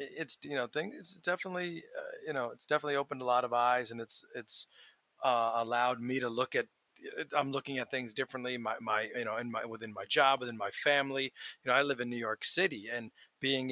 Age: 30-49